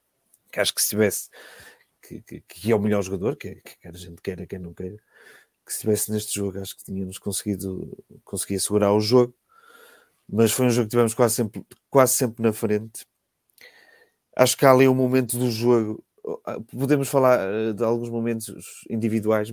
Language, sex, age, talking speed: Portuguese, male, 30-49, 180 wpm